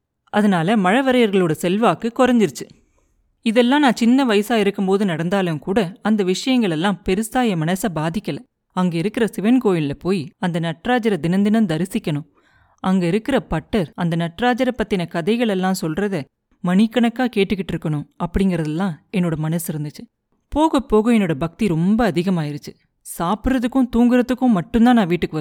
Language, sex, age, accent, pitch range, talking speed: Tamil, female, 30-49, native, 170-225 Hz, 130 wpm